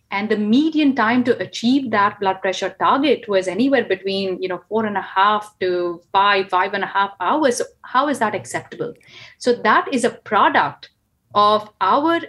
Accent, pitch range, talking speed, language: Indian, 195-245 Hz, 180 wpm, English